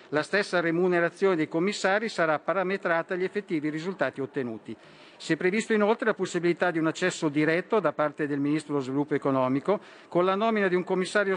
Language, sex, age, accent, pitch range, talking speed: Italian, male, 50-69, native, 155-190 Hz, 180 wpm